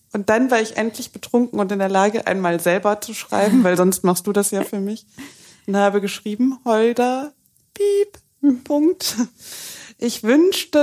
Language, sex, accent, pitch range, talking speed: German, female, German, 195-250 Hz, 165 wpm